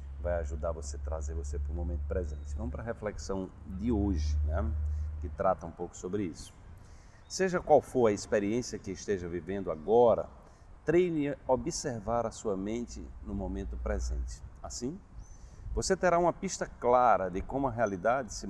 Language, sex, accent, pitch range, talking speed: Portuguese, male, Brazilian, 80-100 Hz, 165 wpm